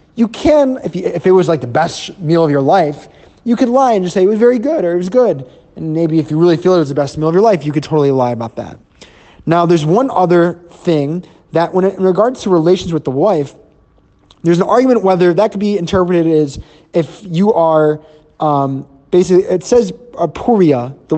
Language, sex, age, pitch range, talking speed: English, male, 20-39, 140-180 Hz, 230 wpm